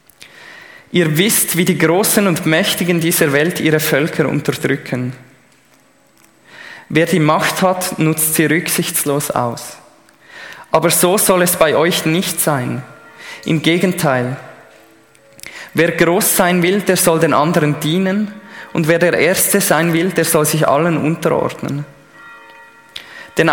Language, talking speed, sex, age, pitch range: German, 130 wpm, male, 20-39, 155-185 Hz